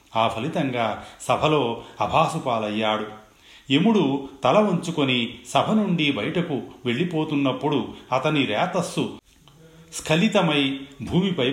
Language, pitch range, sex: Telugu, 115-160 Hz, male